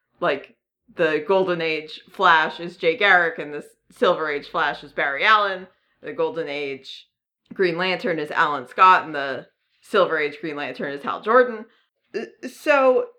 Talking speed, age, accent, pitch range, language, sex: 155 wpm, 30-49, American, 160-255 Hz, English, female